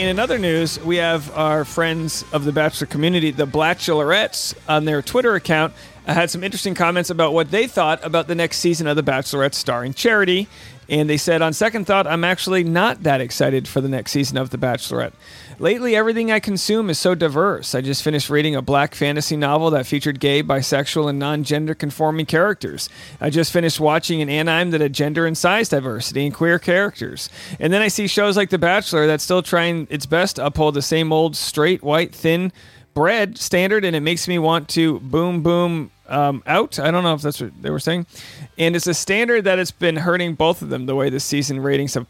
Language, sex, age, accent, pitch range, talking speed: English, male, 40-59, American, 145-175 Hz, 215 wpm